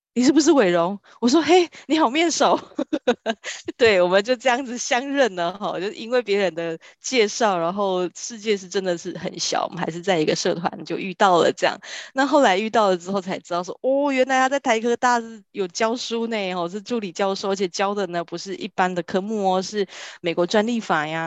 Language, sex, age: Chinese, female, 20-39